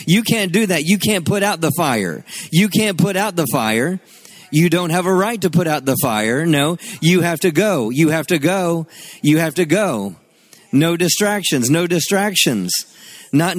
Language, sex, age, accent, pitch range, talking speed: English, male, 40-59, American, 160-195 Hz, 195 wpm